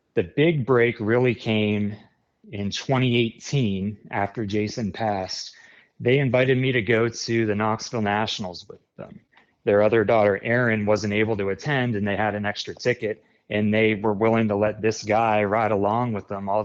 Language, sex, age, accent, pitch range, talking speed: English, male, 30-49, American, 105-120 Hz, 175 wpm